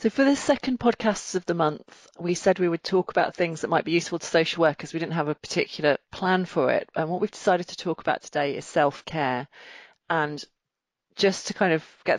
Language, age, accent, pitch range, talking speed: English, 40-59, British, 145-180 Hz, 225 wpm